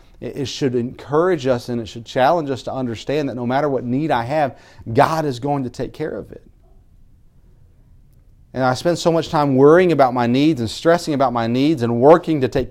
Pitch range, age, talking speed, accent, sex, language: 105-130 Hz, 40-59, 210 wpm, American, male, English